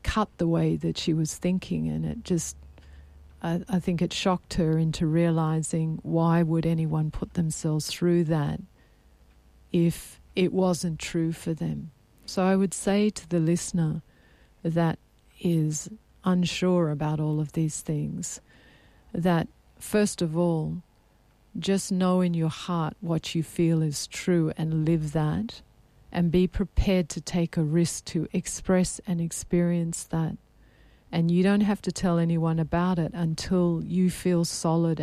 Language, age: English, 50-69